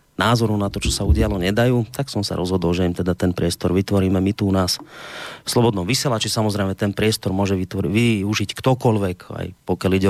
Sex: male